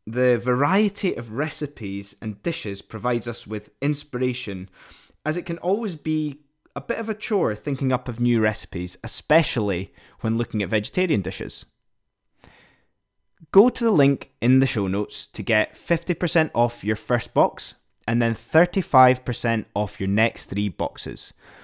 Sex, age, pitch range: male, 20-39, 105-150 Hz